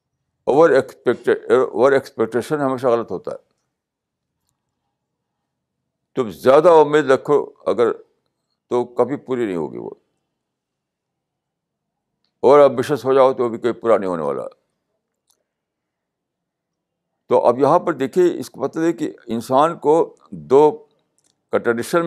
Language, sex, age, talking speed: Urdu, male, 60-79, 115 wpm